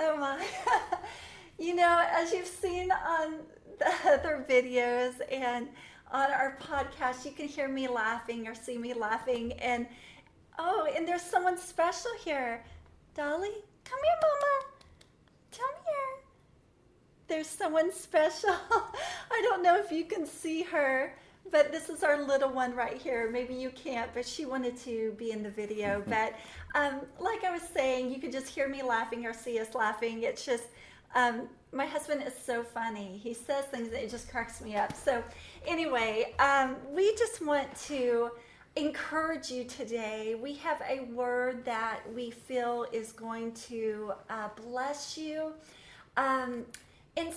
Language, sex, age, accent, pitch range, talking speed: English, female, 30-49, American, 240-325 Hz, 160 wpm